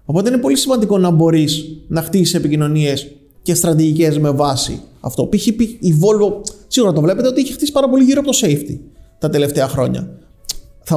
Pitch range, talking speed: 155-215 Hz, 180 wpm